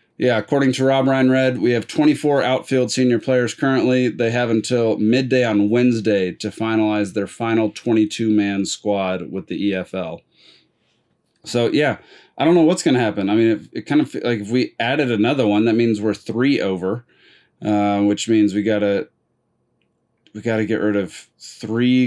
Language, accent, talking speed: English, American, 185 wpm